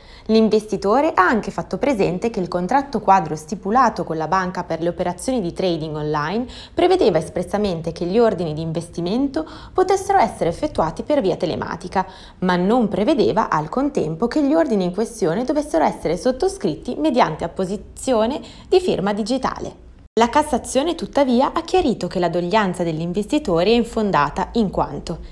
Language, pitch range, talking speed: Italian, 175-260 Hz, 150 wpm